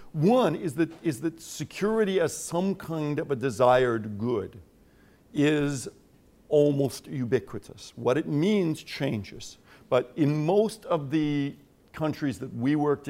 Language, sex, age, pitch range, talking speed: English, male, 60-79, 120-160 Hz, 135 wpm